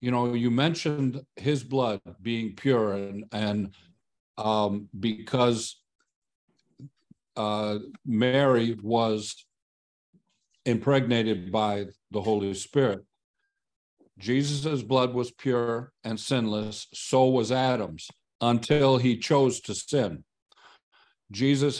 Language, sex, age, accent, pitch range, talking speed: English, male, 50-69, American, 110-140 Hz, 95 wpm